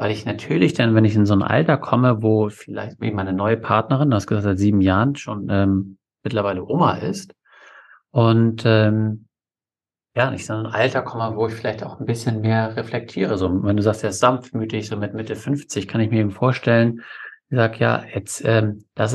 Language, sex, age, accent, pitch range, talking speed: German, male, 50-69, German, 105-120 Hz, 195 wpm